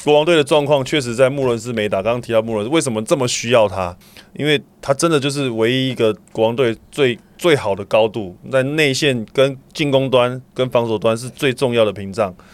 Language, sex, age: Chinese, male, 20-39